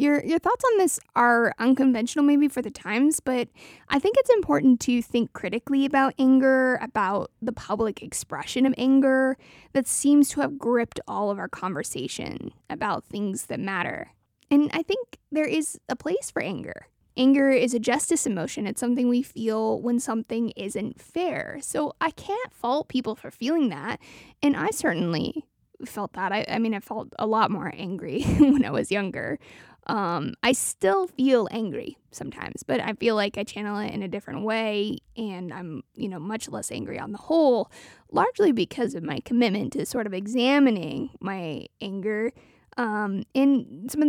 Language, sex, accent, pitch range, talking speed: English, female, American, 215-285 Hz, 175 wpm